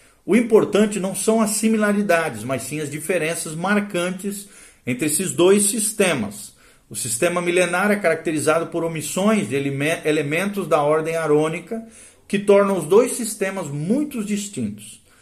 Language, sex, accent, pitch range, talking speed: Portuguese, male, Brazilian, 145-200 Hz, 135 wpm